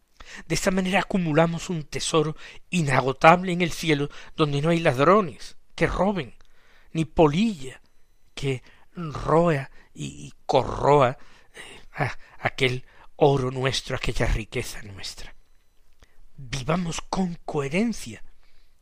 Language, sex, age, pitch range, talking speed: Spanish, male, 60-79, 120-170 Hz, 100 wpm